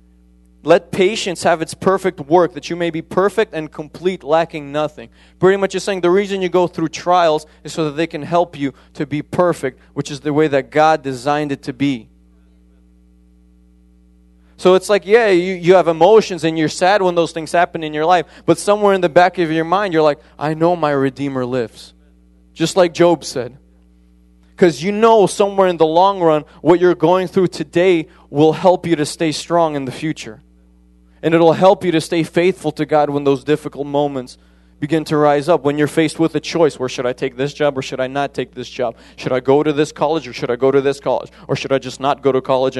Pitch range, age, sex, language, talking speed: 125-170 Hz, 20-39, male, English, 225 wpm